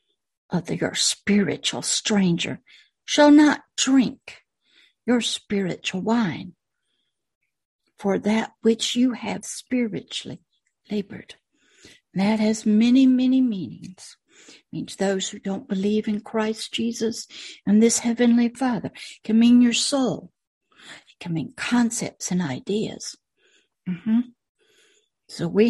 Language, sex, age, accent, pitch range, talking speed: English, female, 60-79, American, 205-265 Hz, 110 wpm